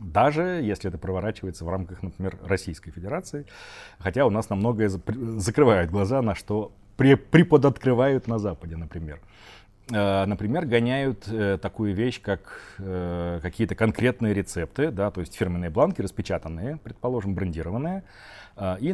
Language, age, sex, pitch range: Russian, 30-49, male, 90-120 Hz